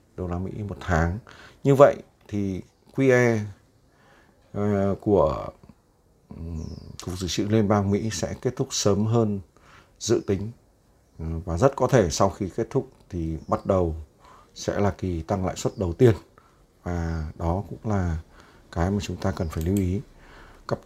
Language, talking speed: Vietnamese, 160 wpm